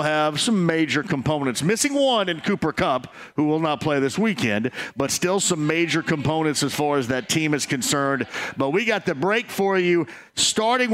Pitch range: 135-170 Hz